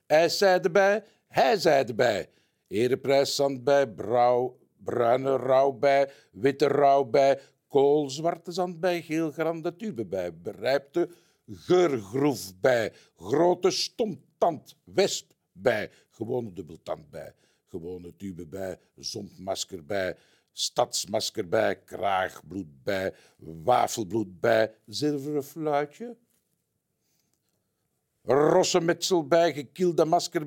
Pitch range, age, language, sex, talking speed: 135-200 Hz, 60-79, Dutch, male, 100 wpm